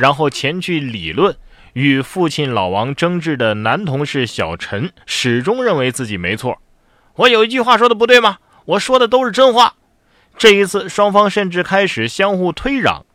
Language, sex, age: Chinese, male, 30-49